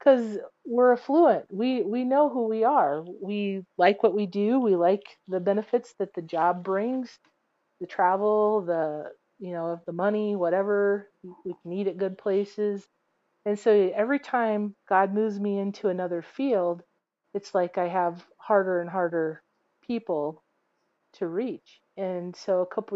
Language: English